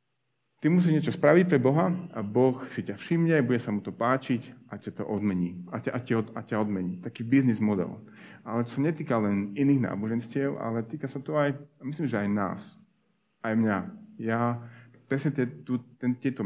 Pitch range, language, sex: 110-135 Hz, Slovak, male